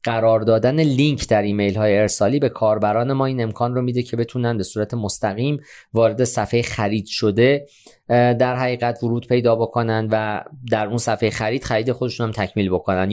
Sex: male